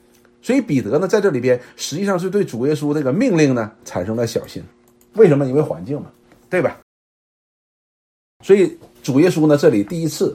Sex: male